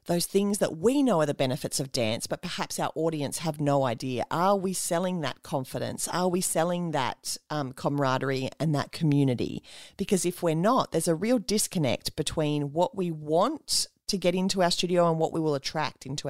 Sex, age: female, 40-59